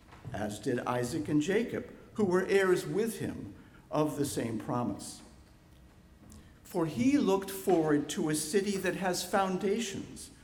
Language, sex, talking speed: English, male, 140 wpm